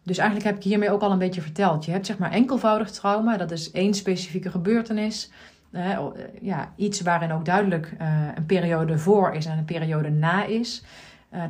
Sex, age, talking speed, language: female, 30-49, 200 wpm, Dutch